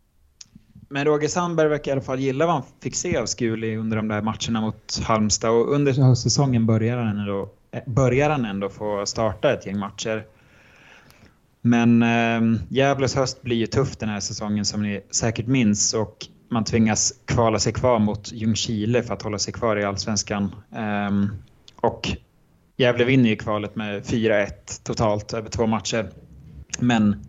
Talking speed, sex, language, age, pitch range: 165 wpm, male, Swedish, 20-39, 105-125 Hz